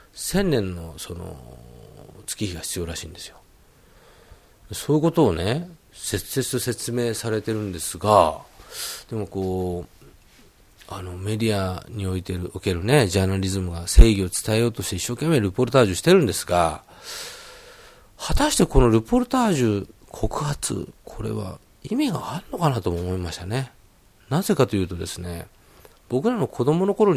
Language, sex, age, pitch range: Japanese, male, 40-59, 95-145 Hz